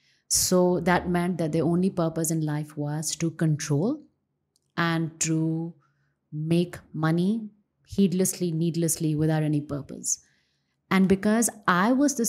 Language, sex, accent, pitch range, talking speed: English, female, Indian, 155-190 Hz, 125 wpm